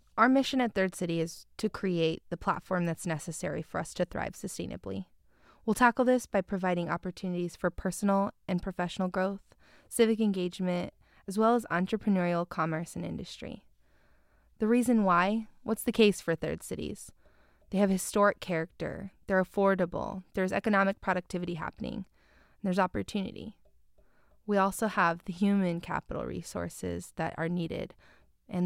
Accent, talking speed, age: American, 145 wpm, 20-39